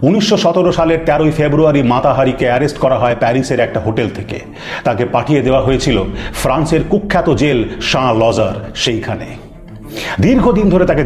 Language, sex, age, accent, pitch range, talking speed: Bengali, male, 40-59, native, 125-200 Hz, 140 wpm